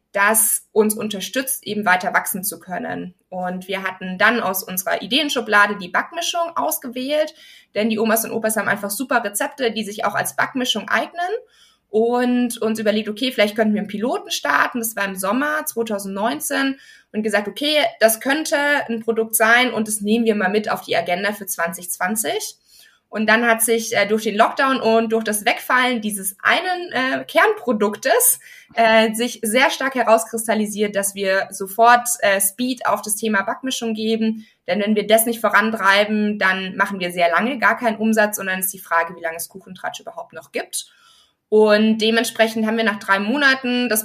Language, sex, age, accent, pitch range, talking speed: German, female, 20-39, German, 200-245 Hz, 180 wpm